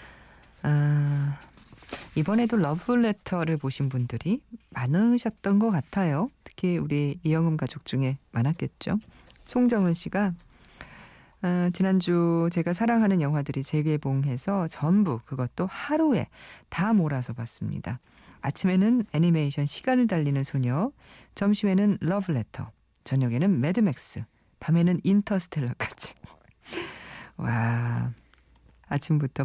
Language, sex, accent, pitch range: Korean, female, native, 135-190 Hz